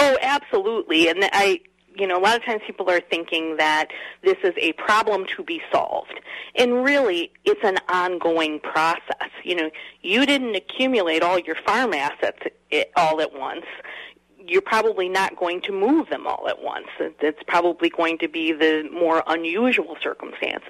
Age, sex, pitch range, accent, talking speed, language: 40-59, female, 175-220 Hz, American, 170 wpm, English